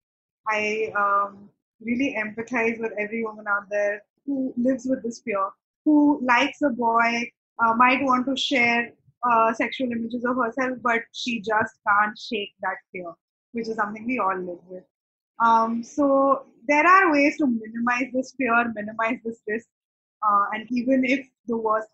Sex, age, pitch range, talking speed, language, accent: female, 20-39, 210-245 Hz, 165 wpm, English, Indian